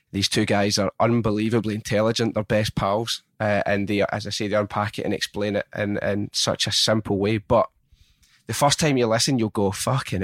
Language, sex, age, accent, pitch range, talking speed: English, male, 20-39, British, 100-120 Hz, 210 wpm